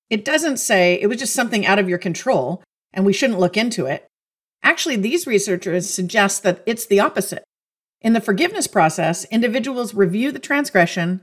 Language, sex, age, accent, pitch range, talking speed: English, female, 50-69, American, 180-245 Hz, 175 wpm